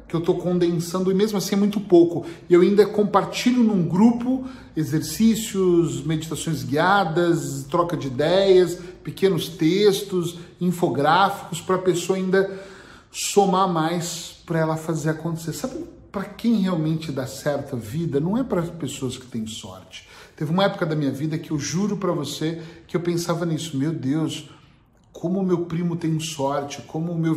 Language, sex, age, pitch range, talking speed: Portuguese, male, 40-59, 135-185 Hz, 165 wpm